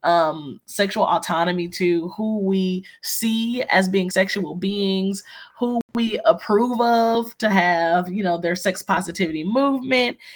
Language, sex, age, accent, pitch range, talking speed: English, female, 20-39, American, 170-205 Hz, 135 wpm